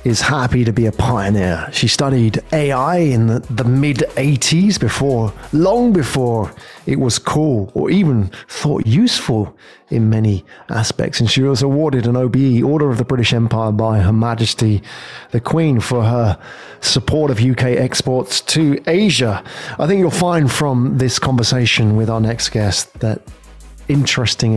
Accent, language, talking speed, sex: British, English, 155 wpm, male